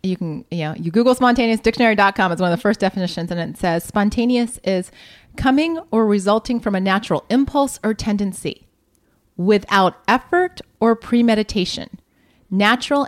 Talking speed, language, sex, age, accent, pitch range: 145 wpm, English, female, 30-49, American, 195-270 Hz